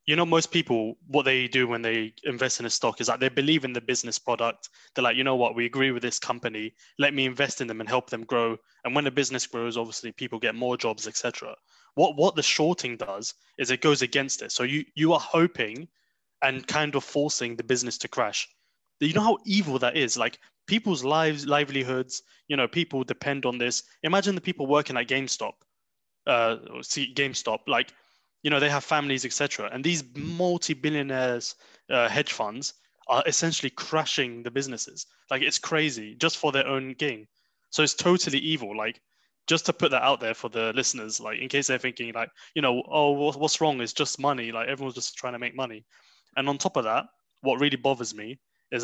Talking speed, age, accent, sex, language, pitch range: 210 wpm, 20-39, British, male, English, 120-150 Hz